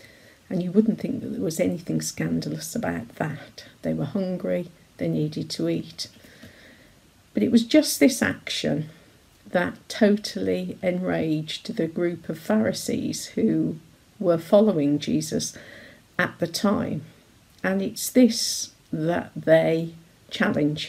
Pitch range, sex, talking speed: 160-215 Hz, female, 125 wpm